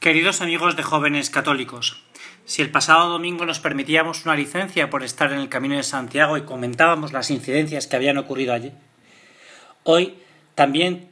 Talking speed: 160 wpm